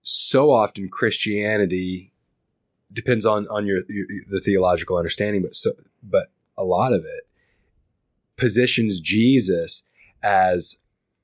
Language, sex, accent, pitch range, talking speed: English, male, American, 95-120 Hz, 110 wpm